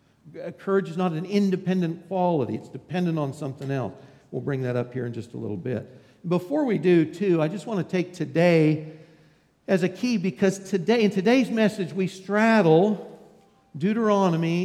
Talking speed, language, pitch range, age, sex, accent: 170 wpm, English, 155-190 Hz, 60-79, male, American